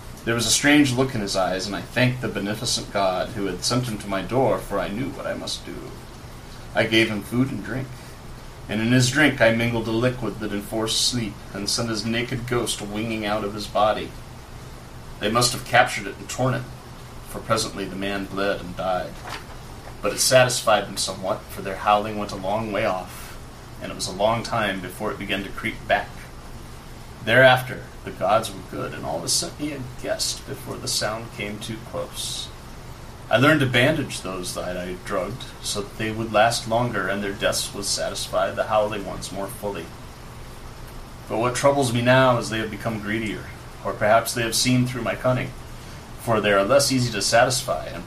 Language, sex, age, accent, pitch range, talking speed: English, male, 30-49, American, 105-125 Hz, 205 wpm